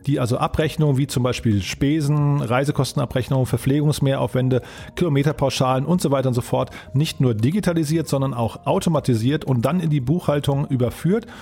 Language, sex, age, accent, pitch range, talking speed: German, male, 40-59, German, 125-155 Hz, 145 wpm